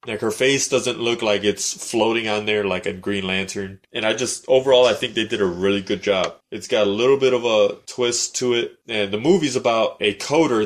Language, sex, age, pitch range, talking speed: English, male, 20-39, 100-120 Hz, 235 wpm